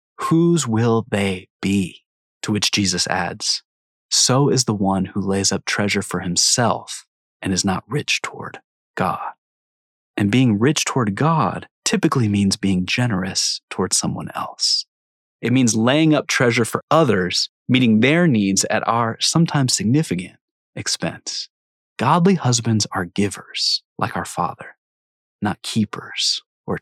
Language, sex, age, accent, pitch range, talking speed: English, male, 30-49, American, 95-125 Hz, 135 wpm